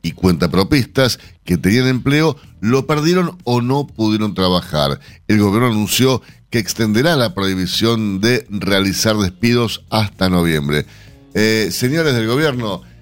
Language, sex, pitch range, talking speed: Spanish, male, 95-135 Hz, 125 wpm